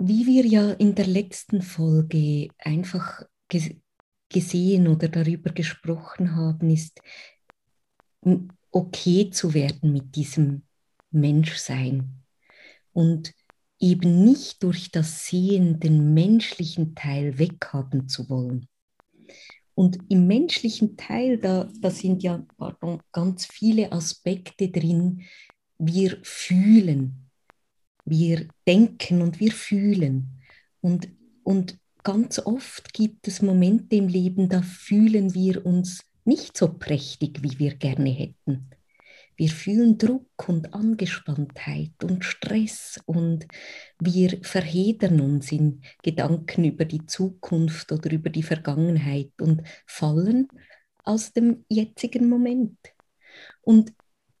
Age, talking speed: 20-39, 110 wpm